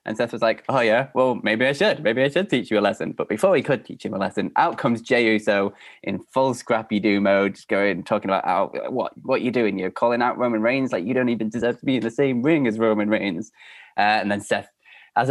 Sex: male